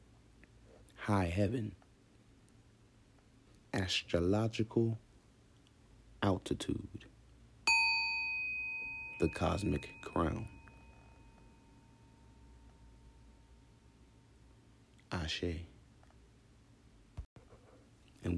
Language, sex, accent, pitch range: English, male, American, 90-125 Hz